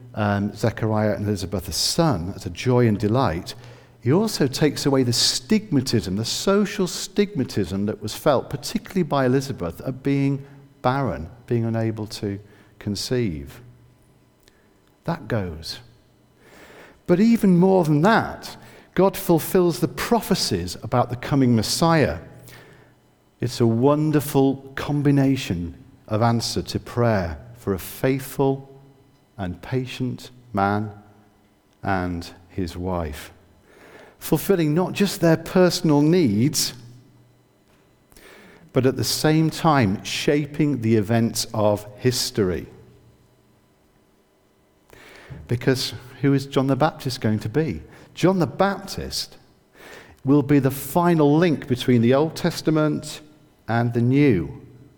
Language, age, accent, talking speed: English, 50-69, British, 115 wpm